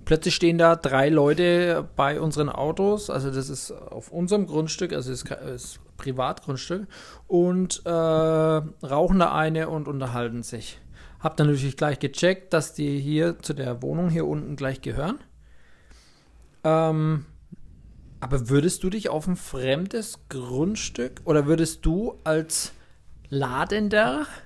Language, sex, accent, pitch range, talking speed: German, male, German, 135-175 Hz, 135 wpm